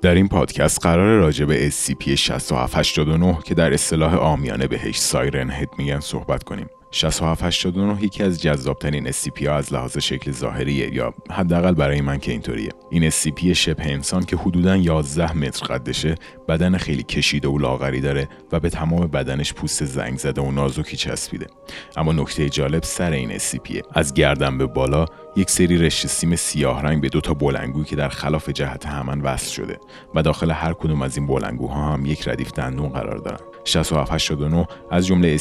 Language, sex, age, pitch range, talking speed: Persian, male, 30-49, 70-85 Hz, 175 wpm